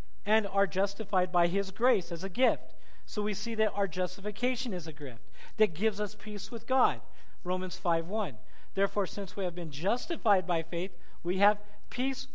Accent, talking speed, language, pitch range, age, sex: American, 185 wpm, English, 150-215 Hz, 40-59, male